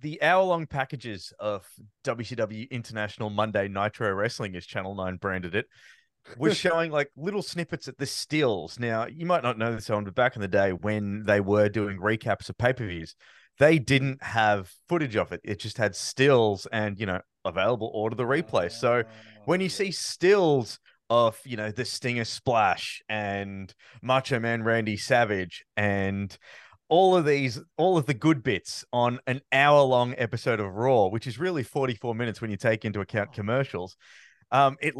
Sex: male